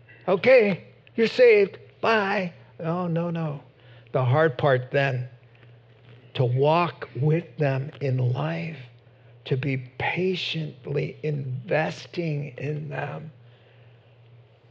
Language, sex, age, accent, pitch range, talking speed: English, male, 50-69, American, 120-155 Hz, 95 wpm